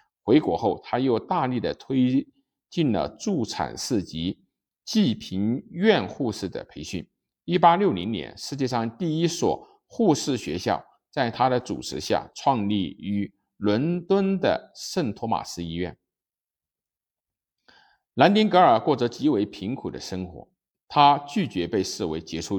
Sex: male